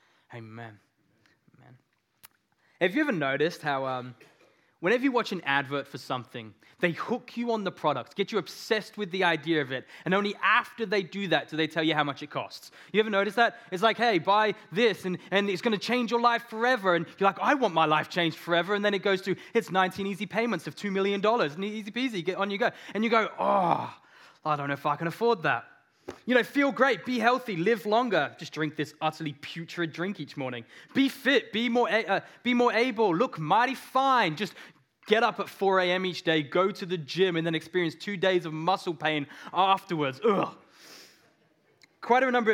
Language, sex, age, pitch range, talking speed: English, male, 20-39, 160-215 Hz, 215 wpm